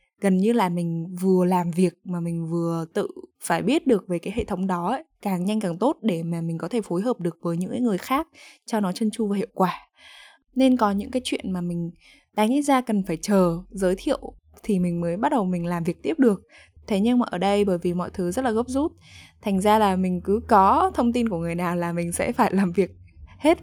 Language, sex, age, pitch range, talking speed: Vietnamese, female, 10-29, 175-230 Hz, 250 wpm